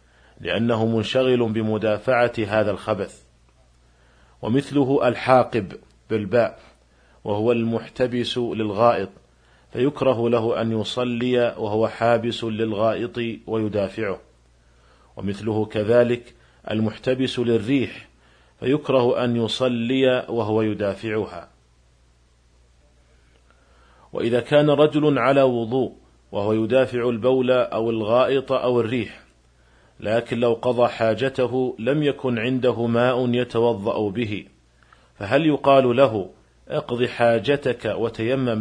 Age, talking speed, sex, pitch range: 40-59, 85 wpm, male, 95-125 Hz